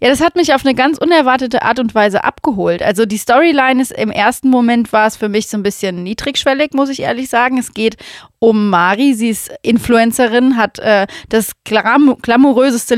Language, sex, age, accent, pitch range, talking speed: German, female, 30-49, German, 210-255 Hz, 200 wpm